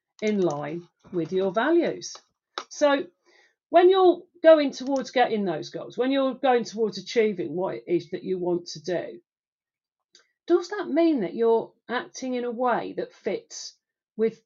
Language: English